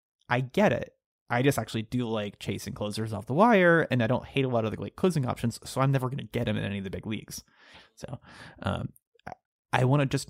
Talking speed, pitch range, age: 255 wpm, 115-150 Hz, 30-49